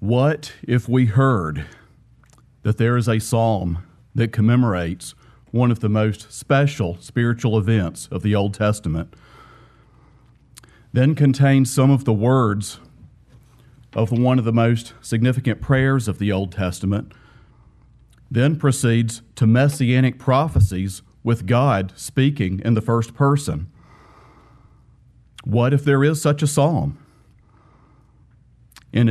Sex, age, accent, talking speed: male, 40-59, American, 120 wpm